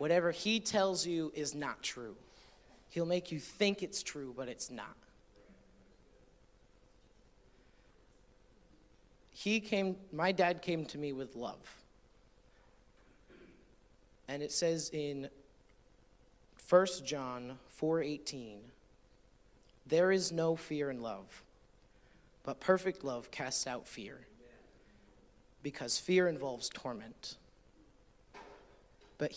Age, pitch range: 30-49, 130-175 Hz